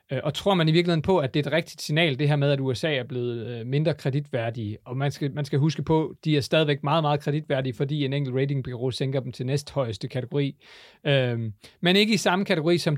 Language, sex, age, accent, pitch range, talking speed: Danish, male, 30-49, native, 135-160 Hz, 225 wpm